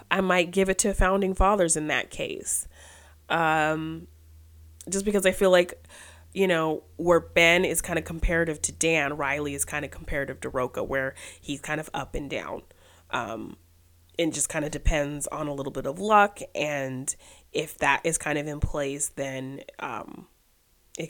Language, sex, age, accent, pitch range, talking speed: English, female, 30-49, American, 140-185 Hz, 180 wpm